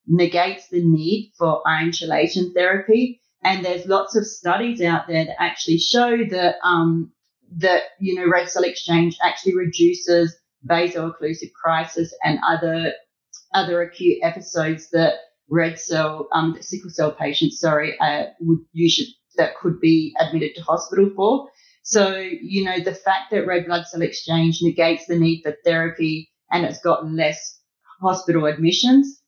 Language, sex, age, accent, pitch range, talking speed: English, female, 30-49, Australian, 165-195 Hz, 150 wpm